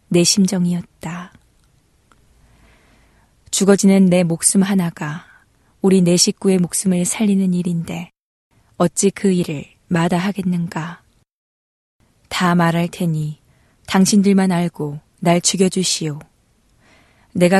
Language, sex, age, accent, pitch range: Korean, female, 20-39, native, 155-190 Hz